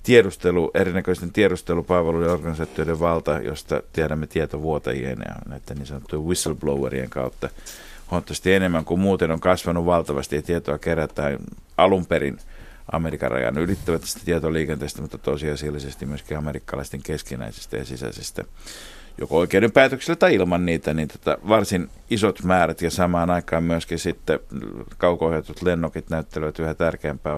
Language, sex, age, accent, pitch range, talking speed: Finnish, male, 50-69, native, 75-90 Hz, 125 wpm